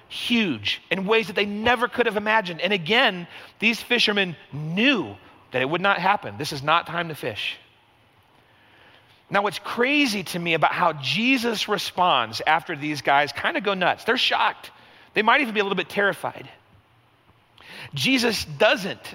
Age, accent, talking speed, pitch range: 40-59, American, 165 wpm, 135-210 Hz